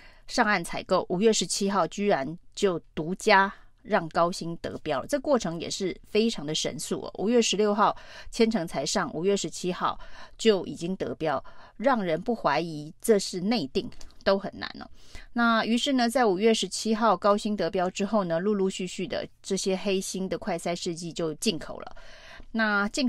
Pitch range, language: 180-220 Hz, Chinese